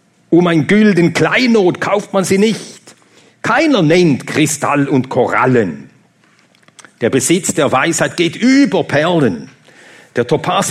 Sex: male